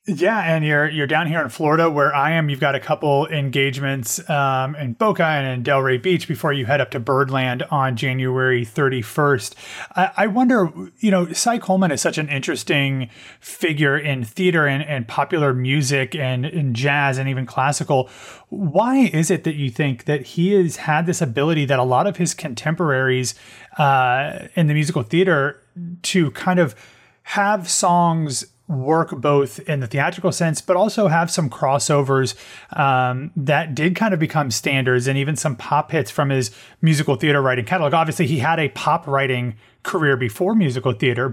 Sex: male